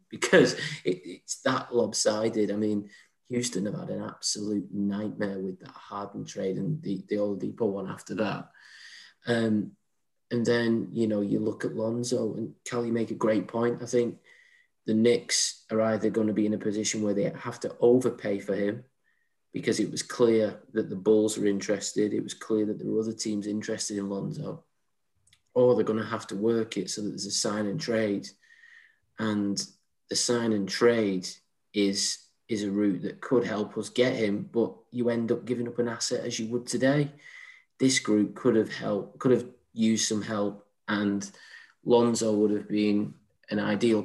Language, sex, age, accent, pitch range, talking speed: English, male, 20-39, British, 100-120 Hz, 185 wpm